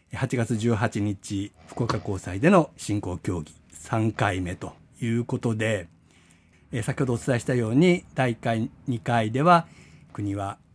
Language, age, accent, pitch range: Japanese, 60-79, native, 105-155 Hz